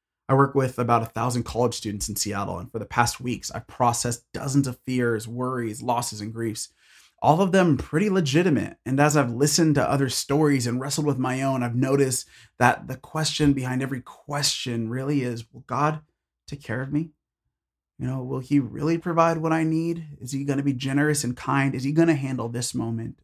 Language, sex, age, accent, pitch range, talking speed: English, male, 30-49, American, 110-140 Hz, 210 wpm